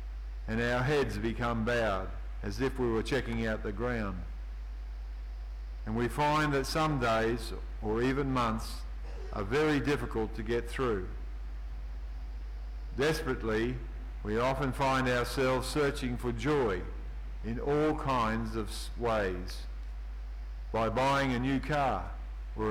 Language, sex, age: English, male, 50-69